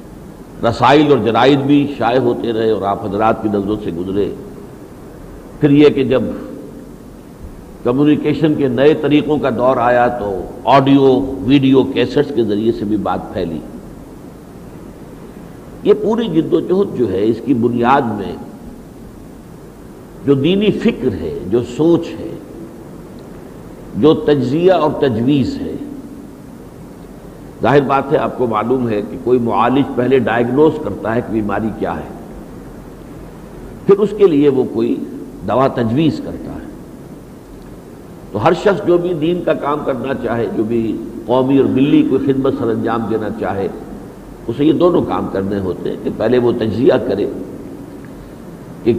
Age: 60-79